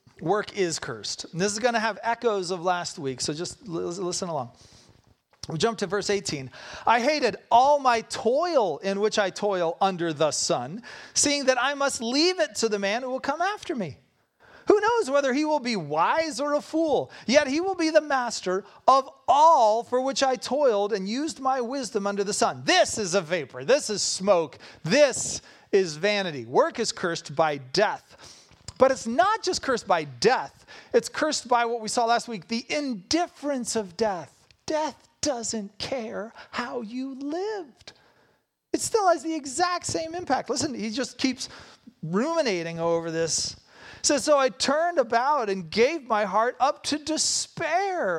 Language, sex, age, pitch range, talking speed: English, male, 40-59, 190-290 Hz, 175 wpm